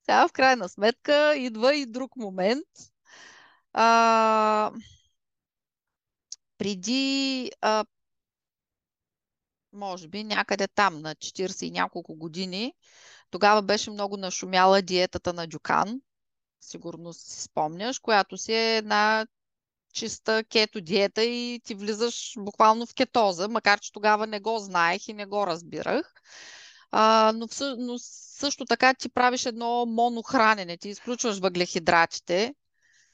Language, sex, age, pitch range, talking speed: Bulgarian, female, 20-39, 200-255 Hz, 120 wpm